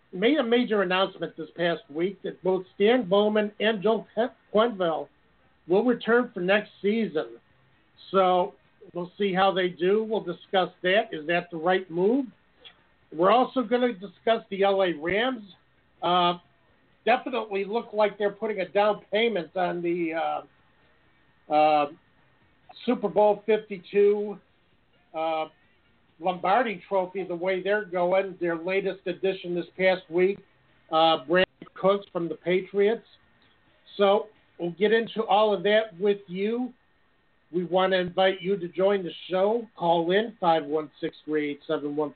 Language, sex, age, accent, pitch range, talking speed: English, male, 50-69, American, 175-210 Hz, 145 wpm